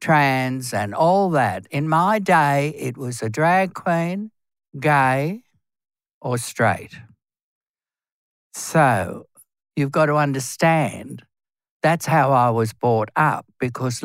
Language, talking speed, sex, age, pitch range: English, 115 wpm, male, 60-79, 120-155 Hz